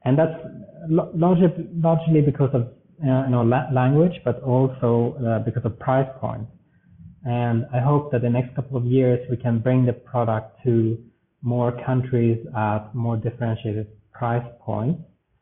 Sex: male